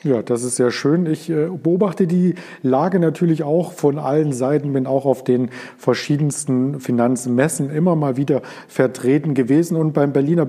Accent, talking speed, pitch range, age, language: German, 160 wpm, 125-160 Hz, 40-59, German